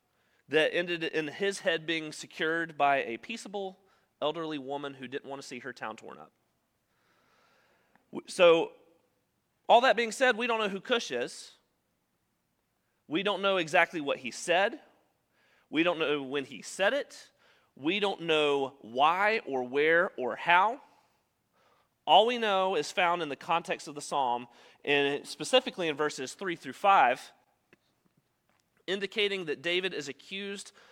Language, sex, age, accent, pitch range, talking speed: English, male, 30-49, American, 140-190 Hz, 150 wpm